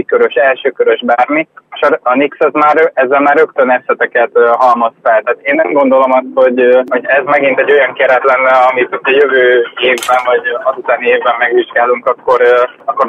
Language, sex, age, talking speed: Hungarian, male, 20-39, 170 wpm